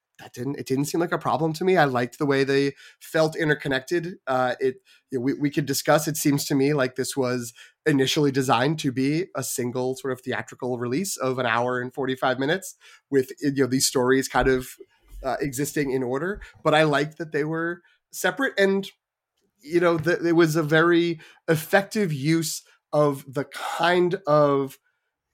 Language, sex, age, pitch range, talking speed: English, male, 30-49, 120-155 Hz, 185 wpm